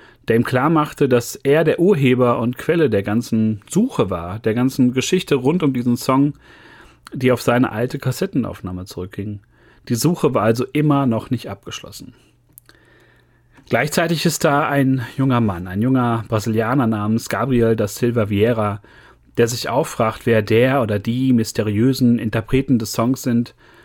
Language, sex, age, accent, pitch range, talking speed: German, male, 30-49, German, 110-135 Hz, 155 wpm